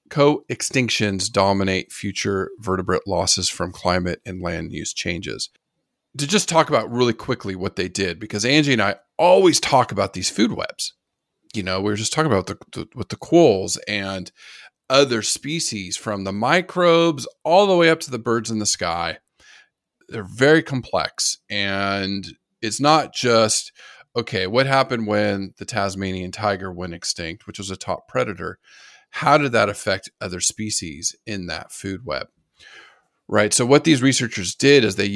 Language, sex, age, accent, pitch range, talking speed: English, male, 40-59, American, 95-125 Hz, 165 wpm